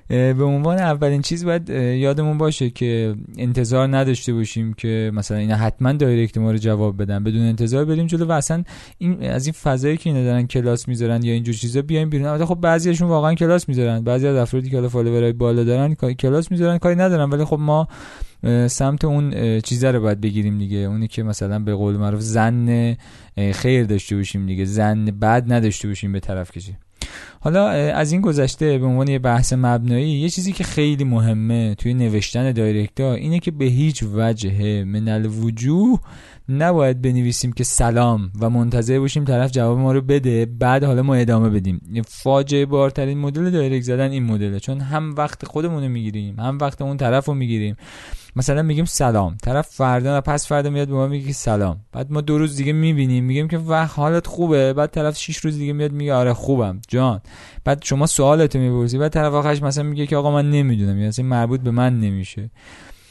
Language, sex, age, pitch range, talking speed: Persian, male, 20-39, 115-145 Hz, 185 wpm